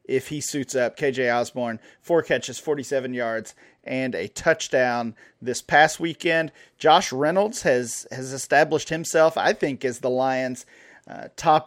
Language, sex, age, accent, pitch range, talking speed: English, male, 40-59, American, 125-155 Hz, 150 wpm